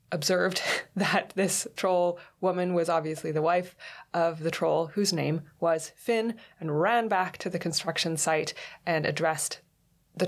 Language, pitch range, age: English, 150-180 Hz, 20-39